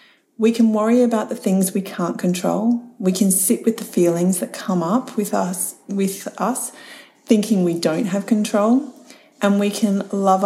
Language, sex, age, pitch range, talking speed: English, female, 40-59, 185-245 Hz, 180 wpm